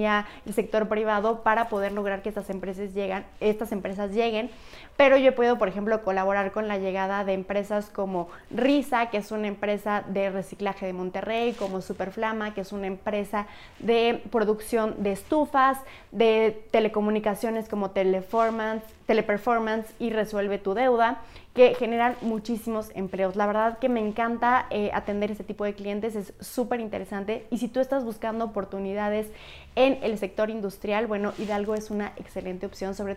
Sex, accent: female, Mexican